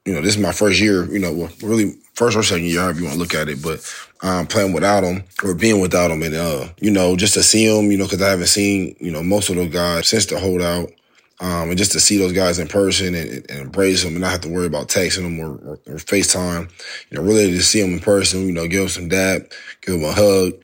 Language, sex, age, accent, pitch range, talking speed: English, male, 20-39, American, 85-100 Hz, 280 wpm